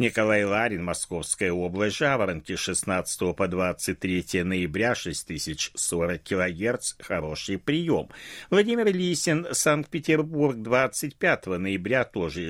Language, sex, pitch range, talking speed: Russian, male, 90-130 Hz, 90 wpm